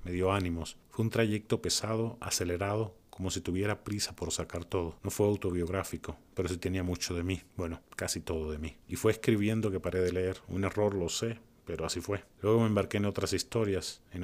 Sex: male